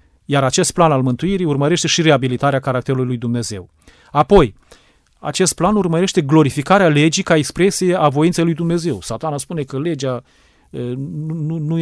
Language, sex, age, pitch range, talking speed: Romanian, male, 30-49, 130-165 Hz, 140 wpm